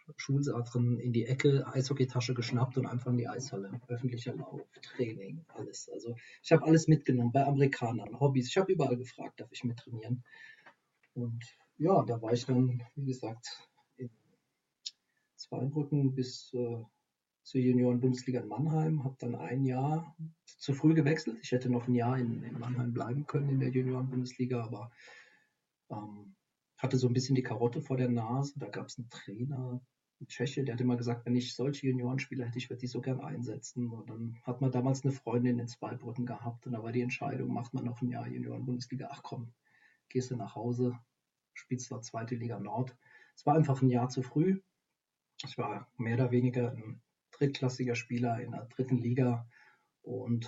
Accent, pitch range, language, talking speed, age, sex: German, 120-135 Hz, German, 180 wpm, 40-59, male